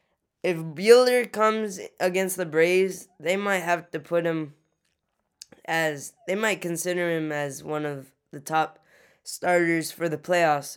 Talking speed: 145 wpm